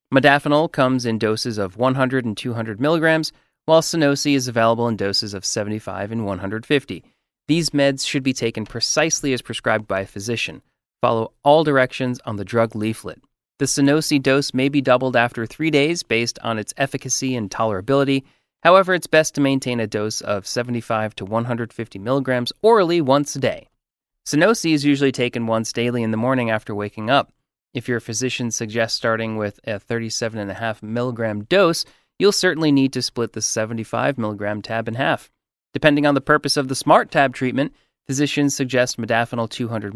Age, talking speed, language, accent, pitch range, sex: 30-49, 170 wpm, English, American, 115-140 Hz, male